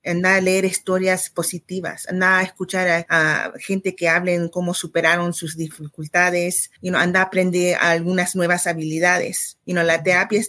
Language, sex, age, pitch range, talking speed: Spanish, female, 30-49, 175-200 Hz, 175 wpm